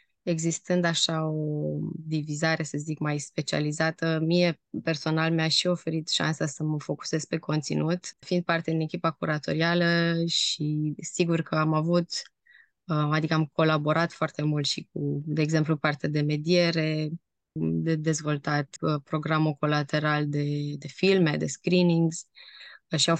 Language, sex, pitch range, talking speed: Romanian, female, 150-175 Hz, 135 wpm